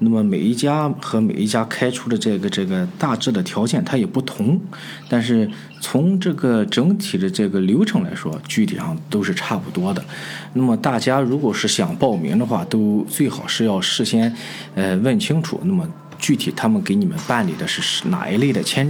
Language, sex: Chinese, male